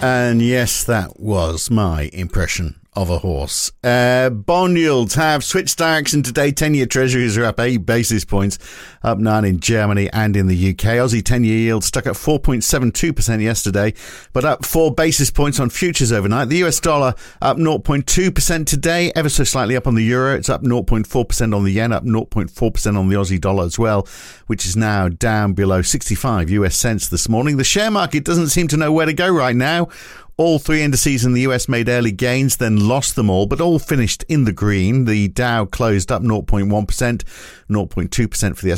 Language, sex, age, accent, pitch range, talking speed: English, male, 50-69, British, 100-140 Hz, 190 wpm